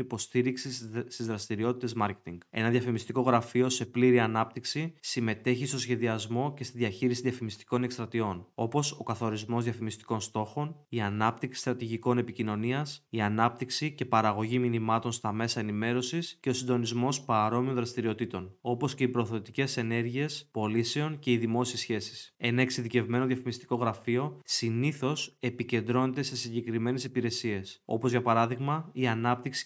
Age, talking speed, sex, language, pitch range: 20-39, 130 wpm, male, Greek, 115-130 Hz